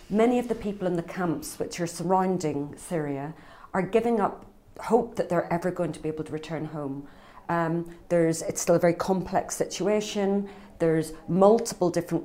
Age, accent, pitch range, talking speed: 40-59, British, 160-190 Hz, 175 wpm